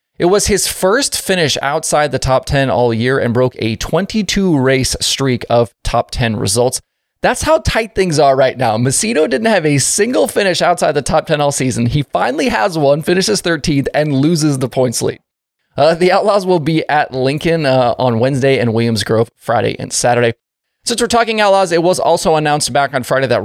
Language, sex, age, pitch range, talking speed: English, male, 20-39, 125-175 Hz, 200 wpm